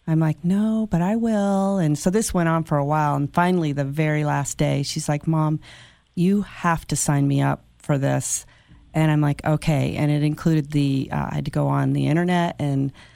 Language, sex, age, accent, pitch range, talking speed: English, female, 40-59, American, 145-175 Hz, 220 wpm